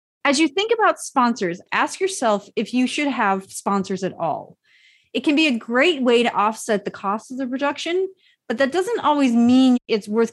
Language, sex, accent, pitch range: English, female, American, 200-265 Hz